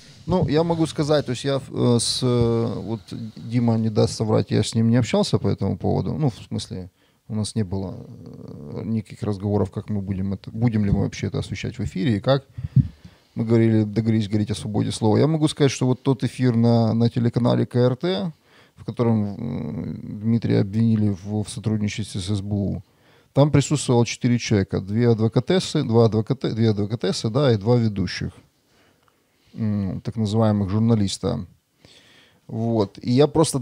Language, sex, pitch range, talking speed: Russian, male, 110-130 Hz, 165 wpm